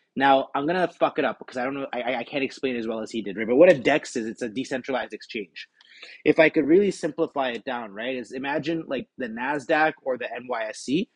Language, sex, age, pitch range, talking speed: English, male, 30-49, 120-155 Hz, 245 wpm